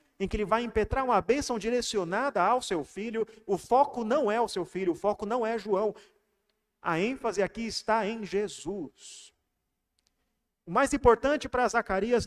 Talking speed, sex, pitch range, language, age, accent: 165 wpm, male, 165-225 Hz, Portuguese, 40-59, Brazilian